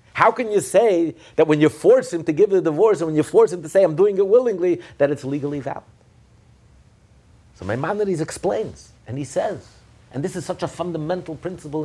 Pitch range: 115-180 Hz